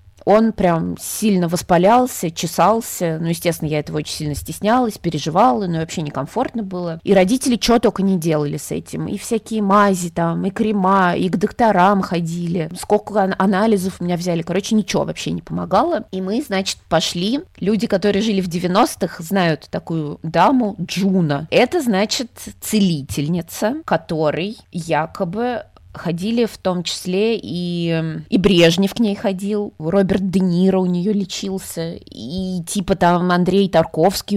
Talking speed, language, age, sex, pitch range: 145 wpm, Russian, 20-39, female, 165-210 Hz